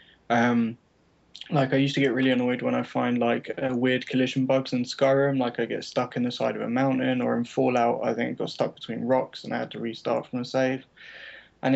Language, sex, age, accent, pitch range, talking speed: English, male, 10-29, British, 115-130 Hz, 235 wpm